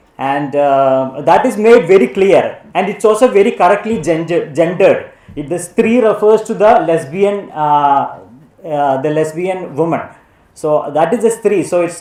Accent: native